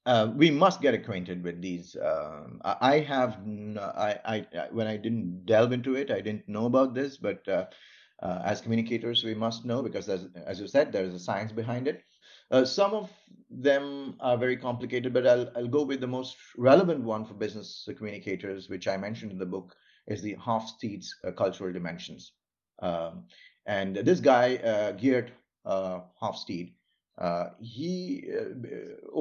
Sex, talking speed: male, 175 wpm